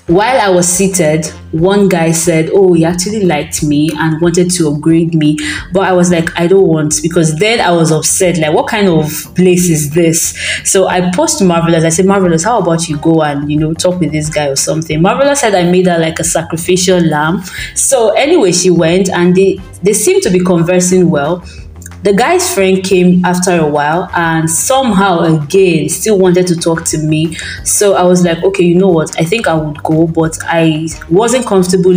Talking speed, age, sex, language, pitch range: 205 wpm, 20-39, female, English, 160-190 Hz